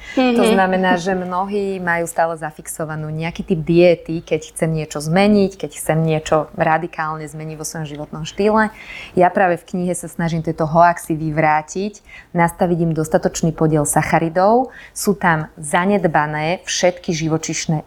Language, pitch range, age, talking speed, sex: Slovak, 160-195 Hz, 20-39, 140 wpm, female